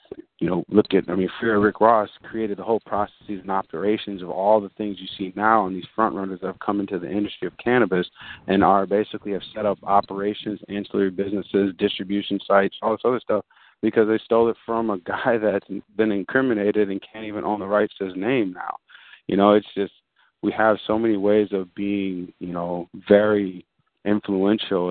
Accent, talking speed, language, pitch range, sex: American, 200 wpm, English, 95-105 Hz, male